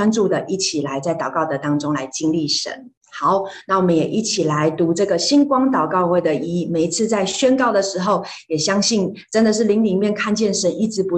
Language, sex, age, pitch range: Chinese, female, 30-49, 165-220 Hz